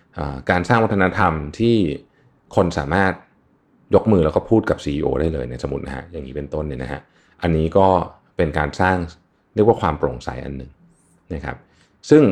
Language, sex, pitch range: Thai, male, 75-100 Hz